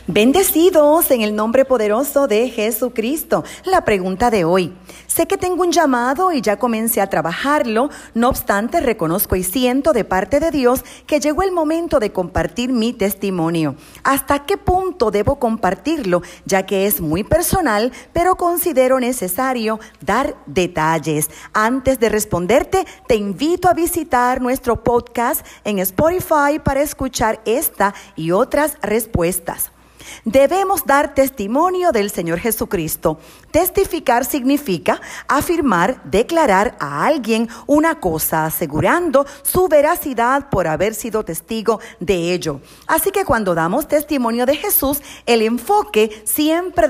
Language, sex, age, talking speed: Spanish, female, 40-59, 130 wpm